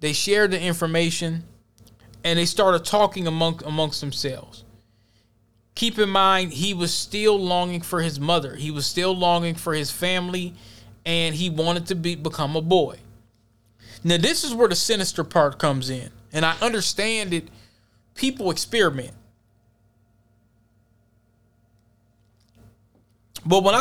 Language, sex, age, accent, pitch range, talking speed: English, male, 20-39, American, 110-175 Hz, 135 wpm